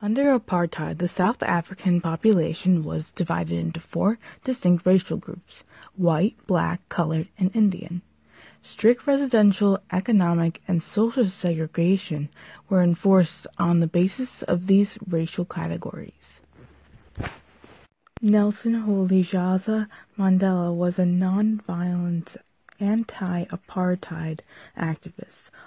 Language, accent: English, American